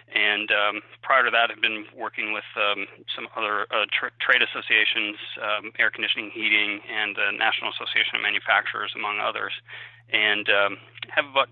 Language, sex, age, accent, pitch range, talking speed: English, male, 30-49, American, 110-120 Hz, 160 wpm